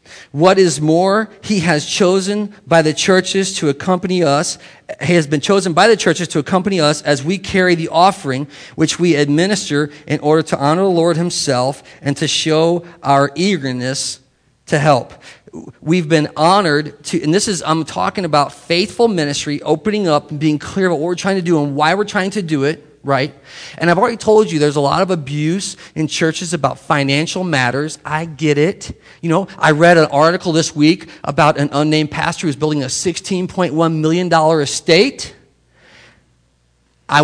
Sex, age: male, 40-59